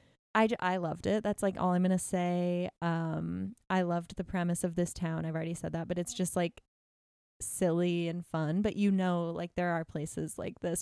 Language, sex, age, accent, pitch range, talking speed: English, female, 20-39, American, 170-200 Hz, 220 wpm